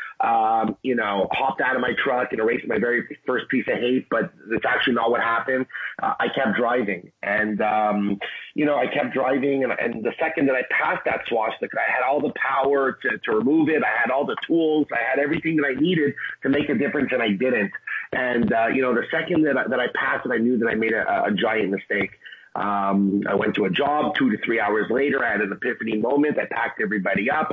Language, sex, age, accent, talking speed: English, male, 30-49, American, 240 wpm